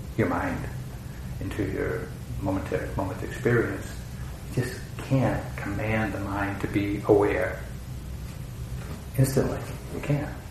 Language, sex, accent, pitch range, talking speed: English, male, American, 105-125 Hz, 120 wpm